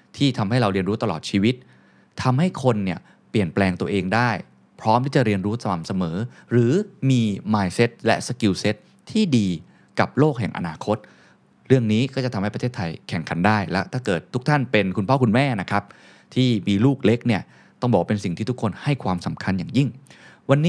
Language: Thai